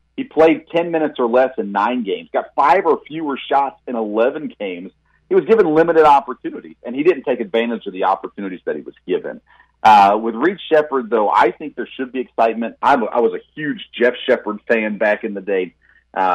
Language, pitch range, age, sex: English, 110-160 Hz, 40-59, male